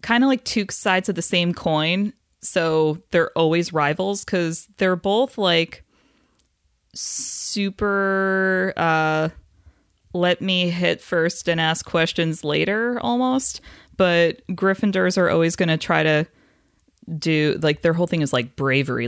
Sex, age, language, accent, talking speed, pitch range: female, 20-39, English, American, 140 wpm, 150-190 Hz